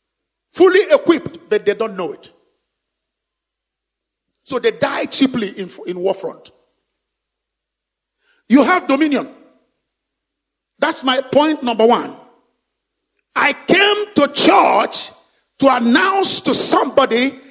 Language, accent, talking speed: English, Nigerian, 105 wpm